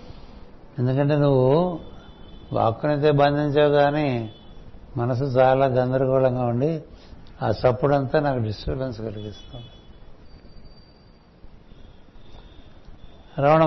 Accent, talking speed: native, 65 wpm